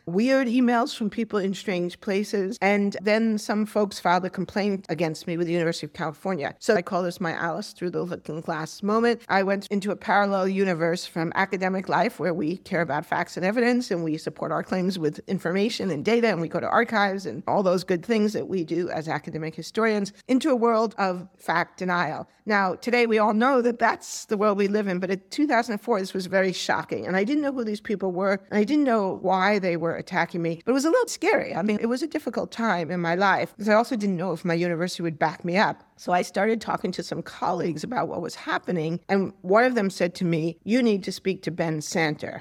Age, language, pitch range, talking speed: 50-69, English, 170-210 Hz, 240 wpm